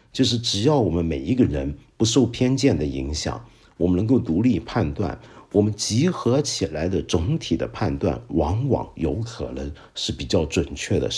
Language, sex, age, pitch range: Chinese, male, 50-69, 75-115 Hz